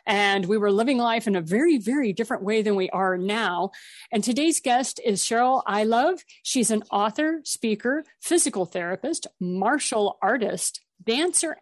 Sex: female